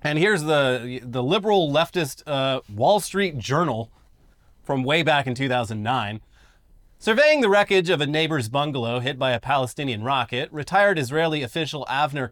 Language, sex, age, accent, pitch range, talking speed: English, male, 30-49, American, 125-160 Hz, 150 wpm